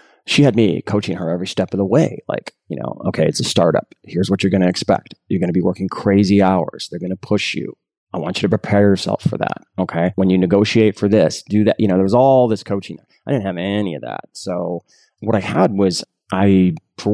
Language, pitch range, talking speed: English, 85-100 Hz, 250 wpm